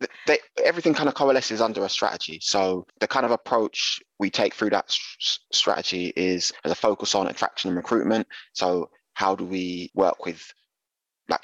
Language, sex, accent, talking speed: English, male, British, 170 wpm